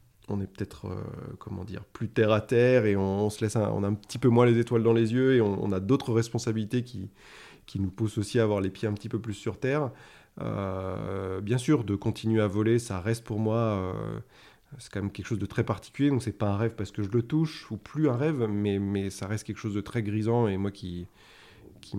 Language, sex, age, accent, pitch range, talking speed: French, male, 20-39, French, 100-120 Hz, 260 wpm